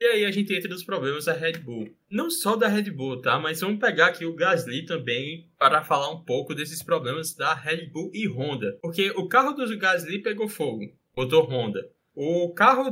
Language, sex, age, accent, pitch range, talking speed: Portuguese, male, 10-29, Brazilian, 145-205 Hz, 215 wpm